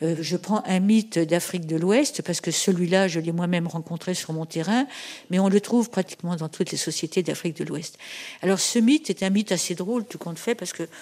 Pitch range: 175-235 Hz